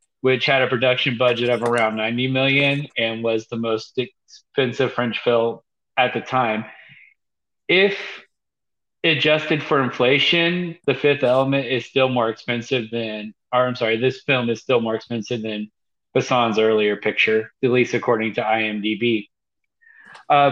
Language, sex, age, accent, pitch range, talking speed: English, male, 30-49, American, 120-160 Hz, 145 wpm